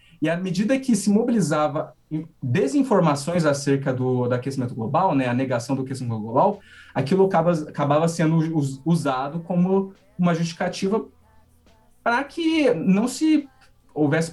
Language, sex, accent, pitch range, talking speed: Portuguese, male, Brazilian, 140-190 Hz, 130 wpm